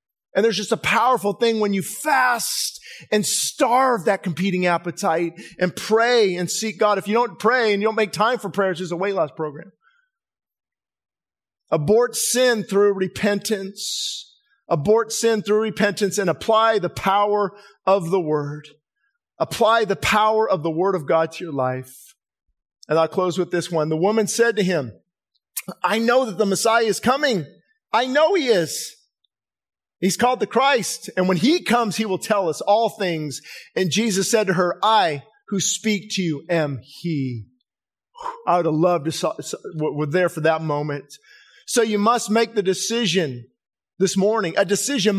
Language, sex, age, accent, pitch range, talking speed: English, male, 40-59, American, 175-230 Hz, 175 wpm